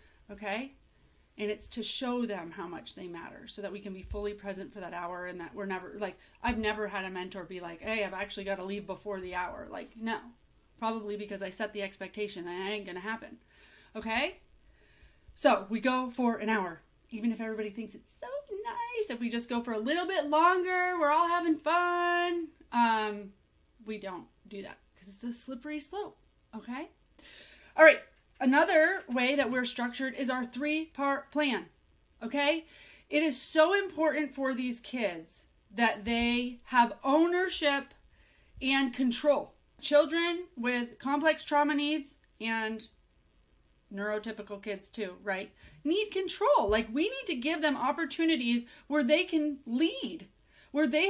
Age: 30-49